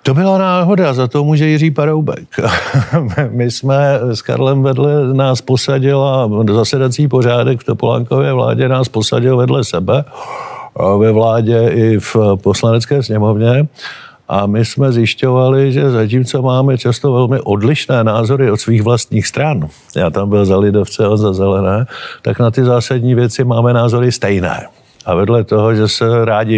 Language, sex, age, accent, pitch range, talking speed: Czech, male, 50-69, native, 105-130 Hz, 155 wpm